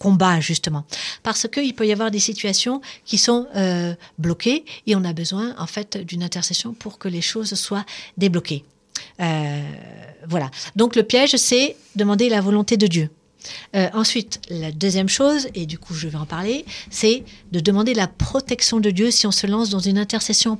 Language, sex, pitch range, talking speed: French, female, 175-230 Hz, 185 wpm